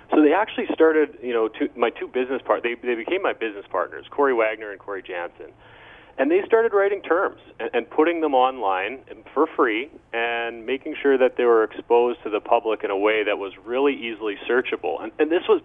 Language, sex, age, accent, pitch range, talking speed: English, male, 30-49, American, 115-155 Hz, 220 wpm